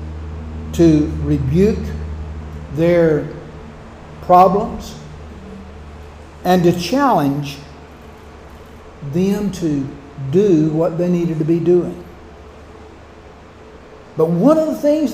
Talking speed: 85 wpm